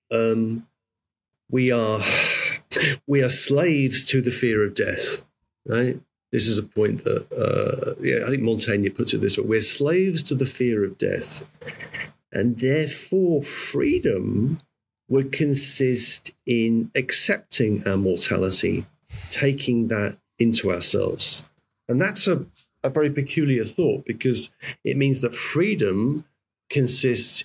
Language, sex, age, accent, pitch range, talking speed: English, male, 40-59, British, 105-135 Hz, 130 wpm